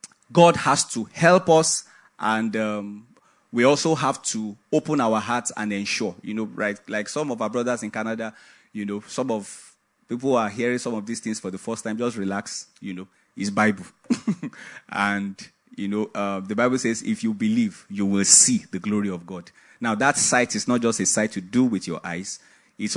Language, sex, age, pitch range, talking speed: English, male, 30-49, 95-115 Hz, 205 wpm